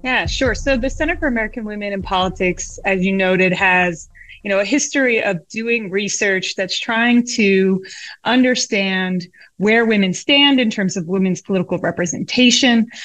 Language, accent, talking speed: English, American, 155 wpm